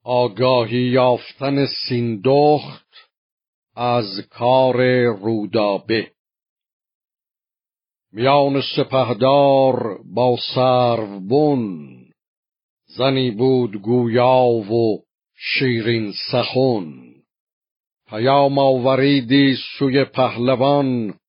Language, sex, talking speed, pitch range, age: Persian, male, 55 wpm, 120-135 Hz, 50-69